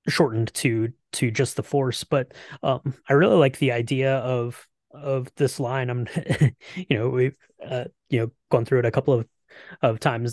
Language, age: English, 20-39